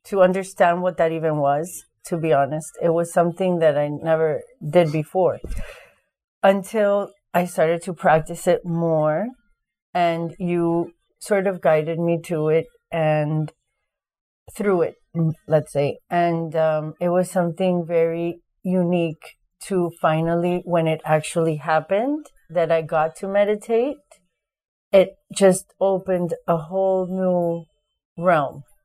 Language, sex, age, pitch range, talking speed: English, female, 40-59, 160-185 Hz, 130 wpm